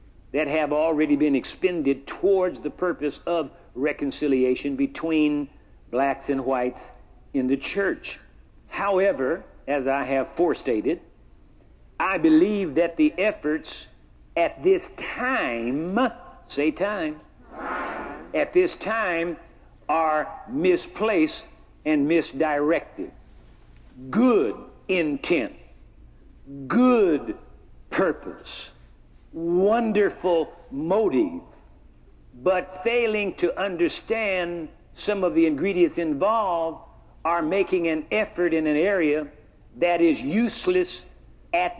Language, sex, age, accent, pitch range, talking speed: English, male, 60-79, American, 145-200 Hz, 95 wpm